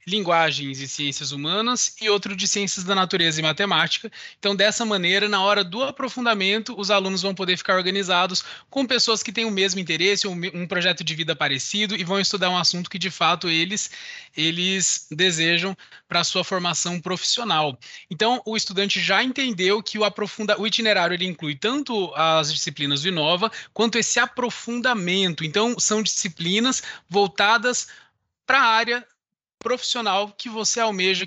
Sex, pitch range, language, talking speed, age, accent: male, 170-215 Hz, Portuguese, 160 wpm, 20-39, Brazilian